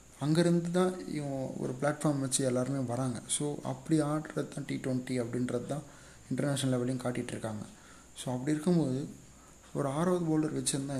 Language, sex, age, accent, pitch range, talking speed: Tamil, male, 30-49, native, 125-150 Hz, 145 wpm